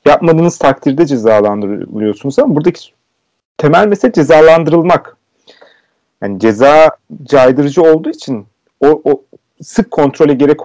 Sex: male